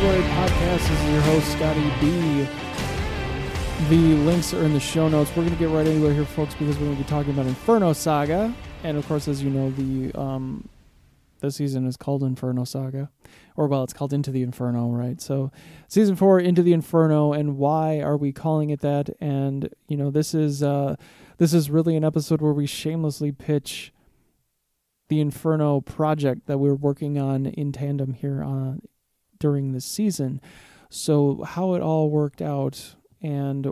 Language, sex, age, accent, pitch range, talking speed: English, male, 20-39, American, 140-155 Hz, 180 wpm